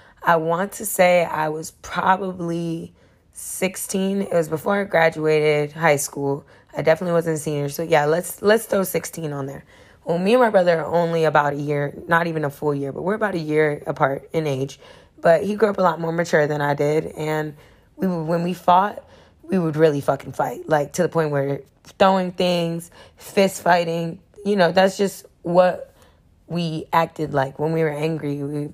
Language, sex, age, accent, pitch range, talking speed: English, female, 10-29, American, 150-185 Hz, 195 wpm